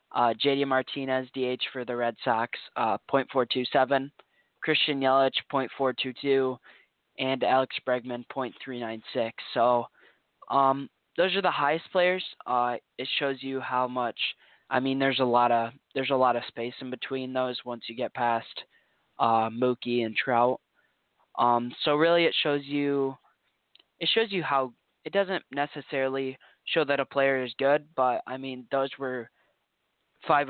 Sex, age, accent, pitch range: male, 10-29, American, 120-135 Hz